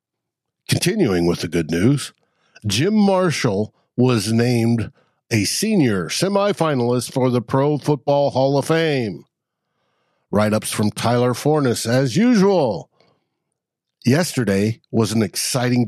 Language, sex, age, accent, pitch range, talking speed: English, male, 60-79, American, 115-150 Hz, 115 wpm